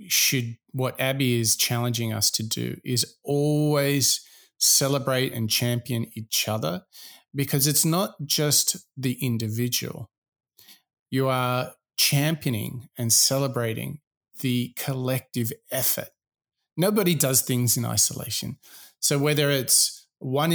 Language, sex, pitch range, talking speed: English, male, 120-150 Hz, 110 wpm